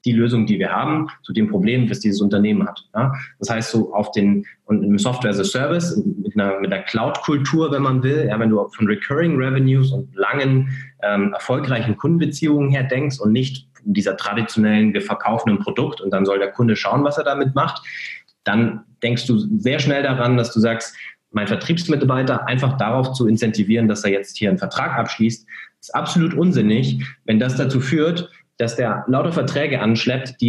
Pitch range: 110-135 Hz